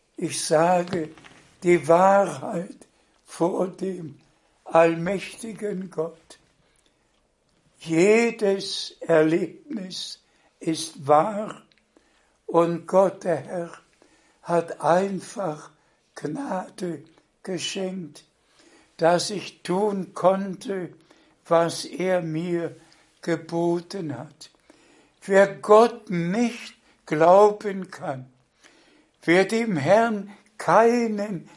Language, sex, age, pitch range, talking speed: German, male, 60-79, 165-210 Hz, 70 wpm